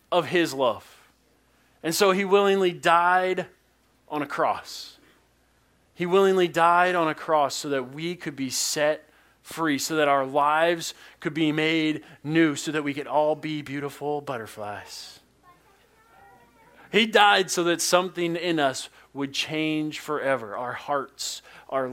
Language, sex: English, male